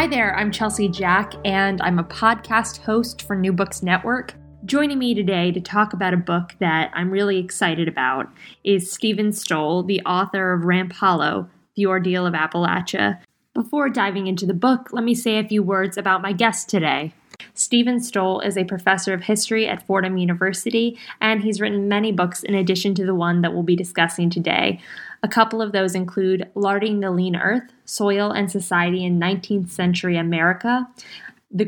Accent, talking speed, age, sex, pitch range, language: American, 180 wpm, 10-29, female, 180-220 Hz, English